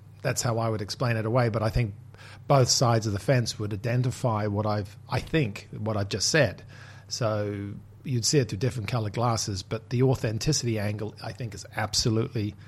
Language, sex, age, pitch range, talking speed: English, male, 40-59, 110-130 Hz, 195 wpm